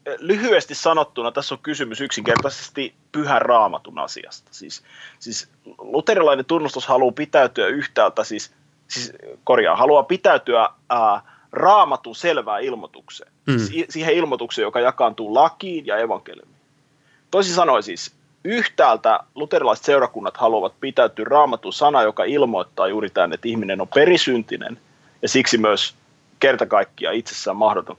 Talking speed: 120 wpm